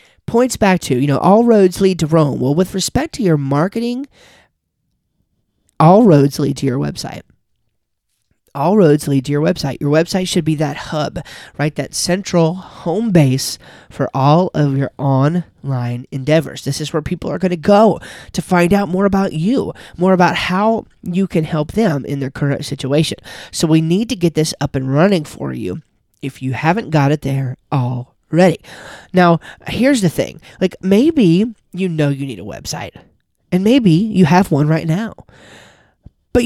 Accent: American